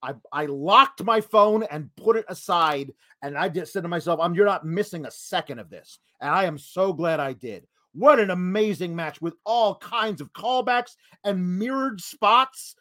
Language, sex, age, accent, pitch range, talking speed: English, male, 30-49, American, 190-255 Hz, 195 wpm